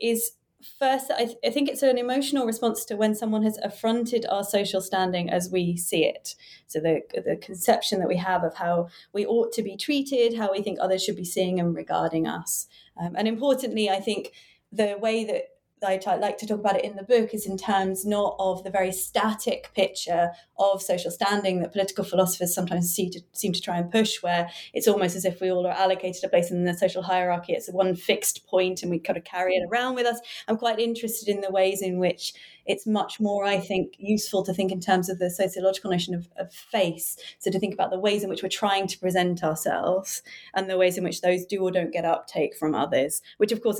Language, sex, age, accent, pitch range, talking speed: English, female, 30-49, British, 175-210 Hz, 225 wpm